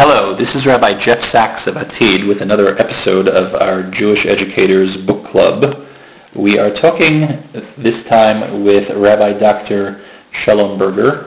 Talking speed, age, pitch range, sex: 145 wpm, 40-59, 100-120 Hz, male